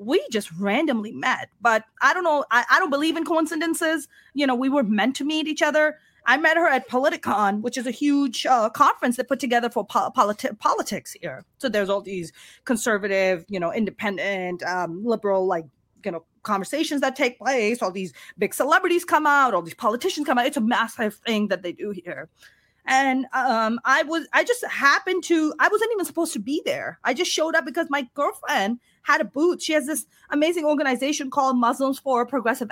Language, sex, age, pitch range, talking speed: English, female, 30-49, 220-305 Hz, 200 wpm